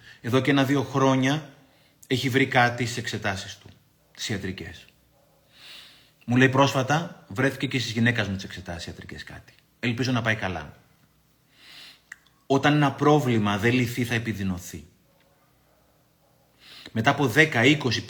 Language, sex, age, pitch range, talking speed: Greek, male, 30-49, 110-140 Hz, 125 wpm